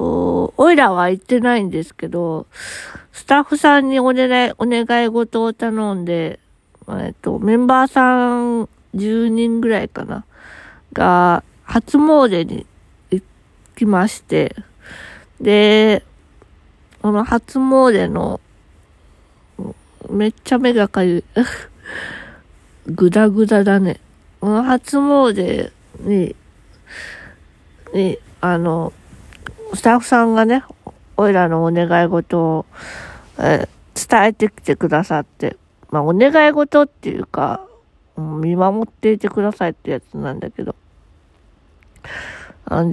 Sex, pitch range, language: female, 170-235 Hz, Japanese